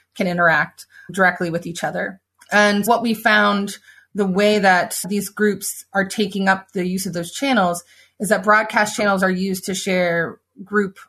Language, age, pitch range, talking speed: English, 20-39, 180-210 Hz, 175 wpm